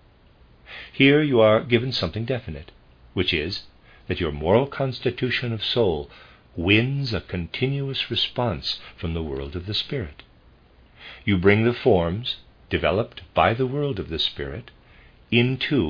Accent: American